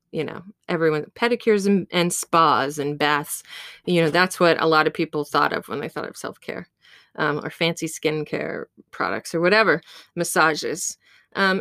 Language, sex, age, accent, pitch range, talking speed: English, female, 20-39, American, 160-200 Hz, 170 wpm